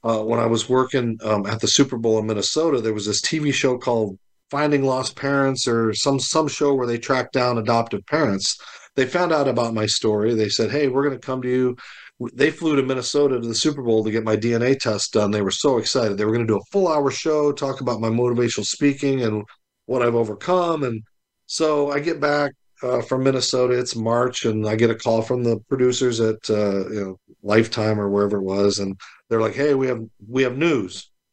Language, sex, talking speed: English, male, 220 wpm